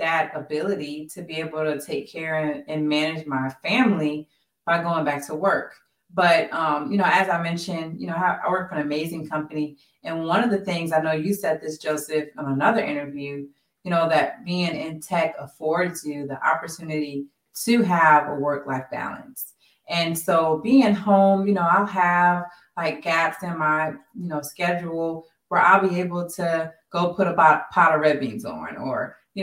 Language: English